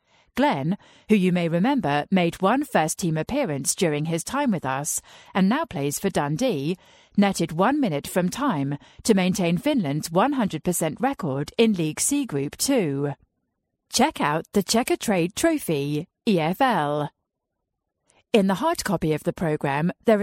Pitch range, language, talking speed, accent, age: 150-230 Hz, English, 145 wpm, British, 40-59